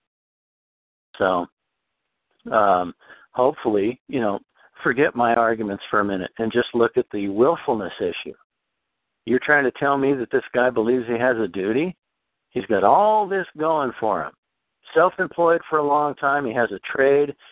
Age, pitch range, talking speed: 50-69, 120-170 Hz, 160 wpm